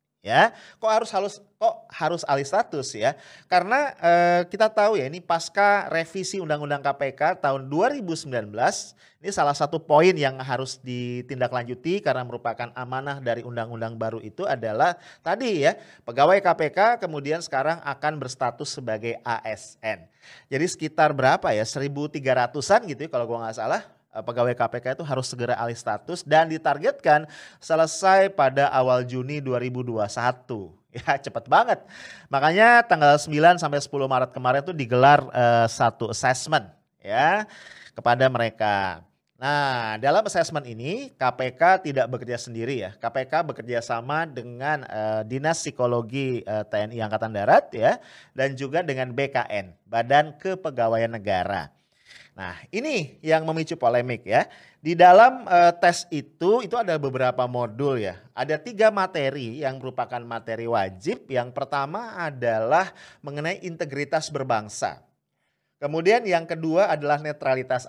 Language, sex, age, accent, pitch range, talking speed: English, male, 30-49, Indonesian, 120-160 Hz, 135 wpm